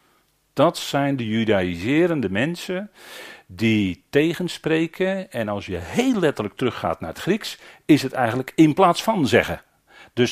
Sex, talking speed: male, 140 wpm